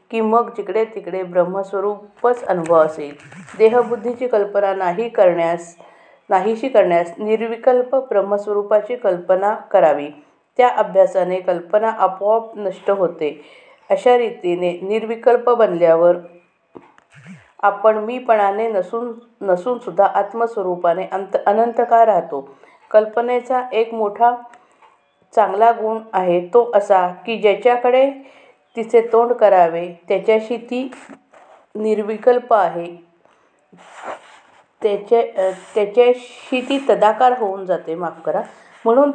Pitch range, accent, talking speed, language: 185-235 Hz, native, 95 wpm, Marathi